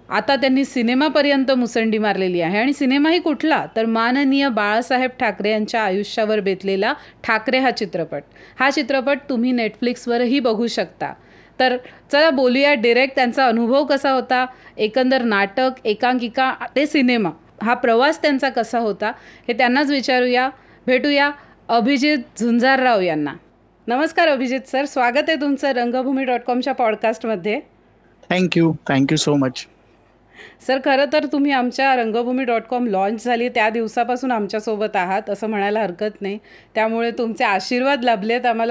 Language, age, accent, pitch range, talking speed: Marathi, 30-49, native, 220-260 Hz, 130 wpm